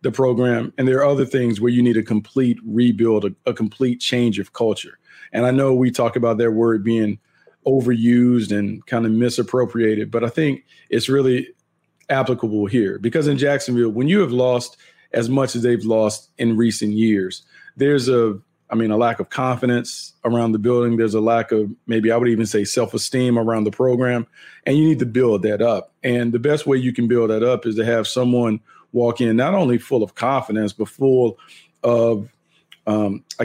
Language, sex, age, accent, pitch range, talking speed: English, male, 40-59, American, 110-130 Hz, 195 wpm